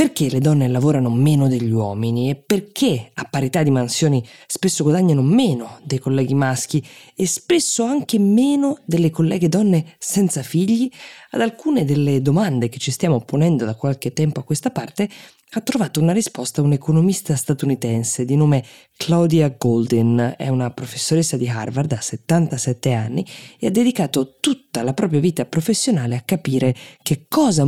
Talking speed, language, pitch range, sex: 155 wpm, Italian, 125-175 Hz, female